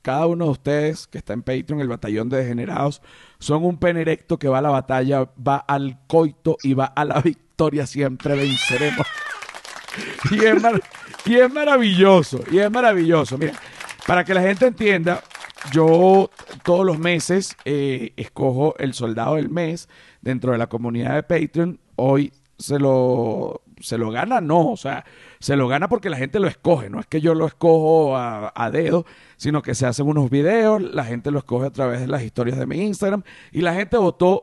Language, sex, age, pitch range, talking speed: Spanish, male, 50-69, 130-170 Hz, 185 wpm